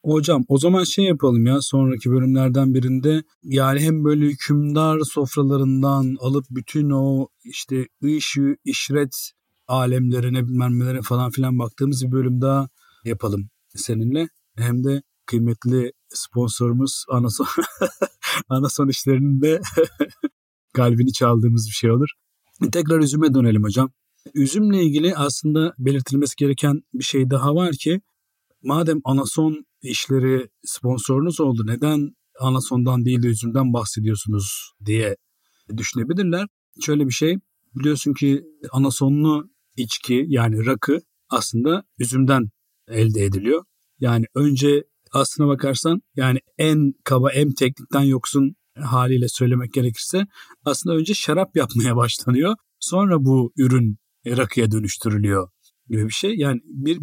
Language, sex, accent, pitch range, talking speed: Turkish, male, native, 125-150 Hz, 115 wpm